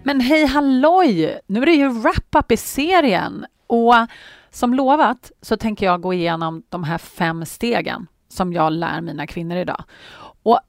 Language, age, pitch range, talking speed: Swedish, 30-49, 165-235 Hz, 165 wpm